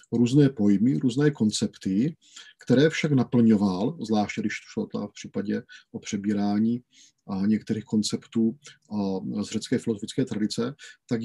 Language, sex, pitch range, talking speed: Czech, male, 105-130 Hz, 115 wpm